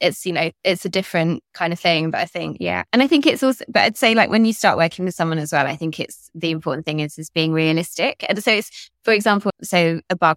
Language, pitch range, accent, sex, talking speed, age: English, 160-190 Hz, British, female, 280 wpm, 20-39